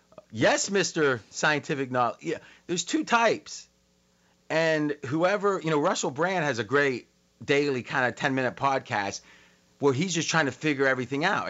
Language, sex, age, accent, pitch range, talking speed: English, male, 30-49, American, 115-150 Hz, 155 wpm